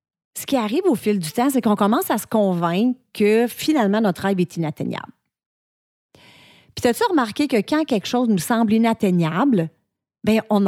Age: 30-49